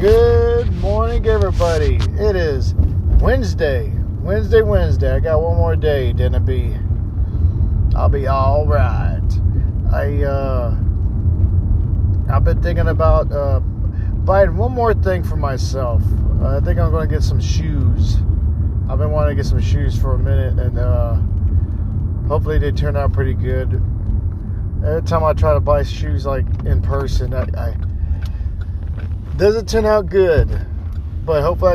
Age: 40-59